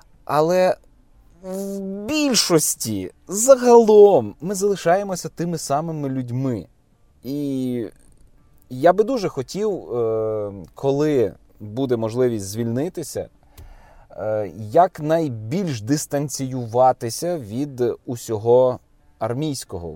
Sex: male